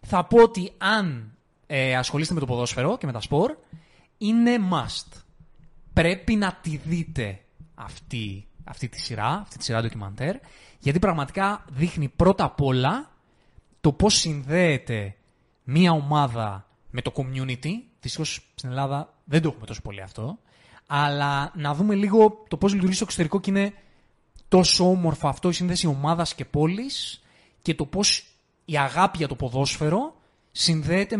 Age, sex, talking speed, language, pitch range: 20-39, male, 150 wpm, Greek, 125-170 Hz